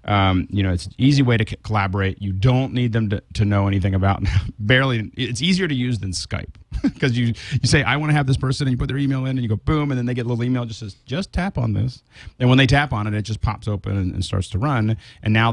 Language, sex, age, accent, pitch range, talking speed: English, male, 40-59, American, 95-125 Hz, 295 wpm